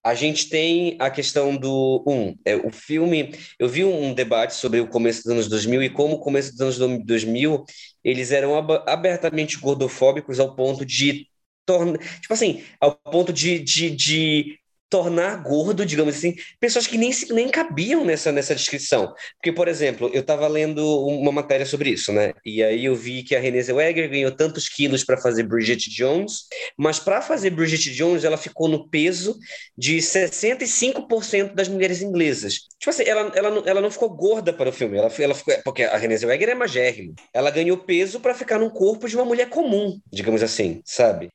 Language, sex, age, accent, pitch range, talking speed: Portuguese, male, 20-39, Brazilian, 135-180 Hz, 175 wpm